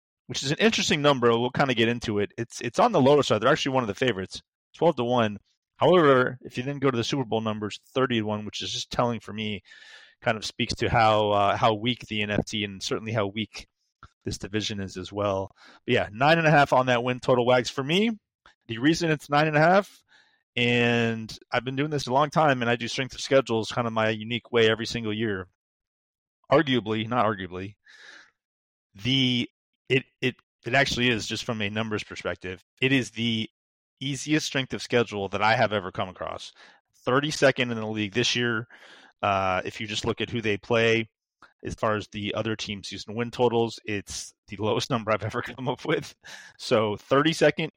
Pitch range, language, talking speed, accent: 110-130 Hz, English, 210 wpm, American